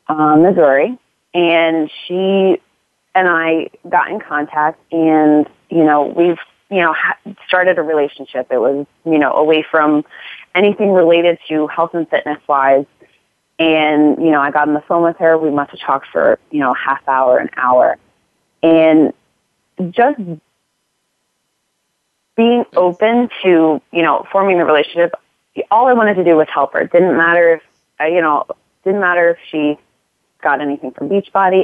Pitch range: 155-185 Hz